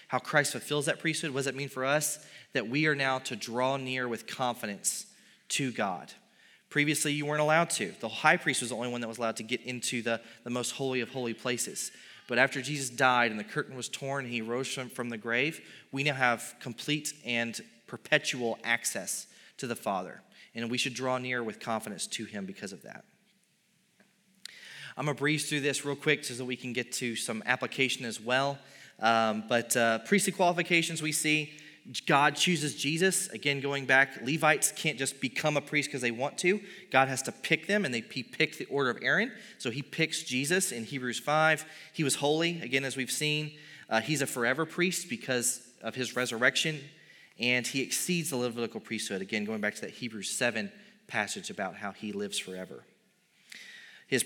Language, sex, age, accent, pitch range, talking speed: English, male, 30-49, American, 120-150 Hz, 200 wpm